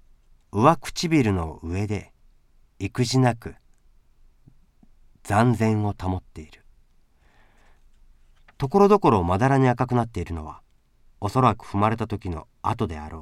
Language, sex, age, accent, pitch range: Japanese, male, 40-59, native, 80-120 Hz